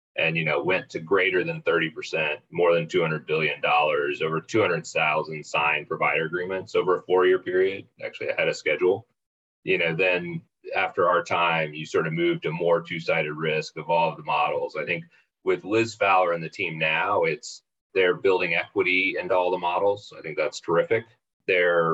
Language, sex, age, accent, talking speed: English, male, 30-49, American, 170 wpm